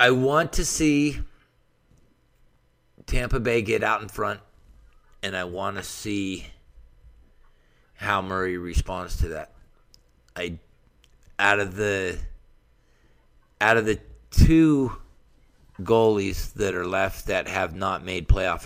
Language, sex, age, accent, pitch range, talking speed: English, male, 50-69, American, 85-105 Hz, 120 wpm